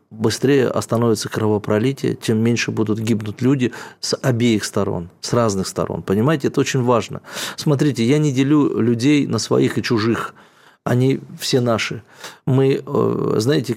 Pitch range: 110-130 Hz